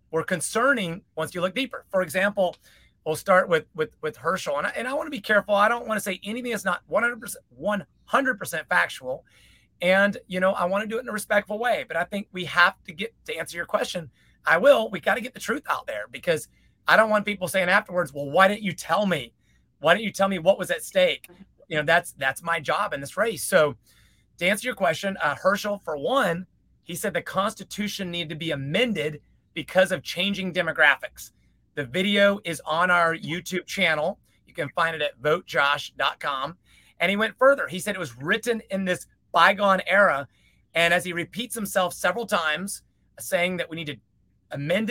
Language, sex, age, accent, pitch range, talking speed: English, male, 30-49, American, 165-210 Hz, 215 wpm